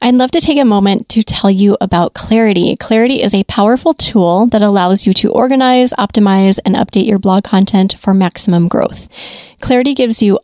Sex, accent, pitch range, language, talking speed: female, American, 195-235 Hz, English, 190 wpm